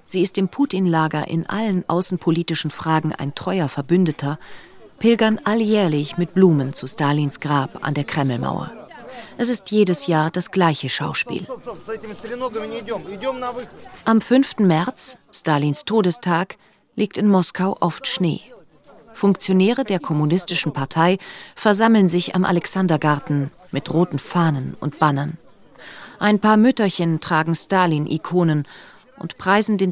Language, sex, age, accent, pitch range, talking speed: German, female, 40-59, German, 155-195 Hz, 120 wpm